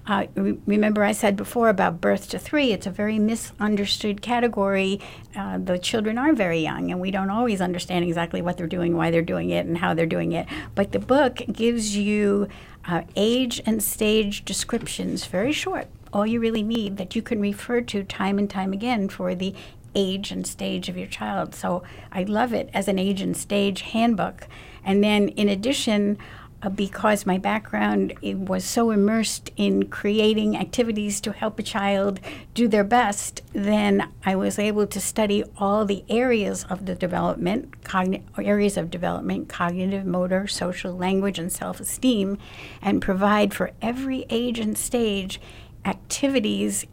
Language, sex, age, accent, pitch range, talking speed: English, female, 60-79, American, 185-220 Hz, 165 wpm